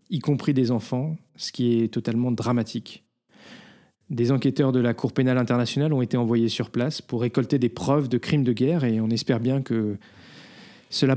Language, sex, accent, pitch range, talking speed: French, male, French, 115-135 Hz, 190 wpm